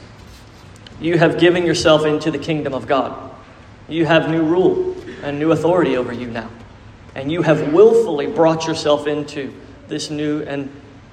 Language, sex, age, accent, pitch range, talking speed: English, male, 40-59, American, 115-165 Hz, 155 wpm